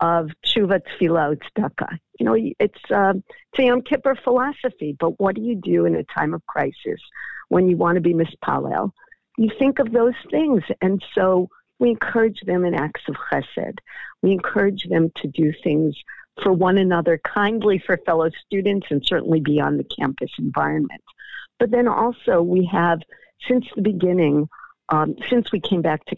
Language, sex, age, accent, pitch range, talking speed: English, female, 50-69, American, 155-205 Hz, 170 wpm